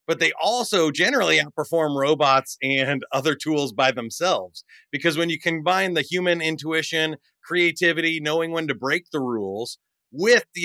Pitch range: 130-170 Hz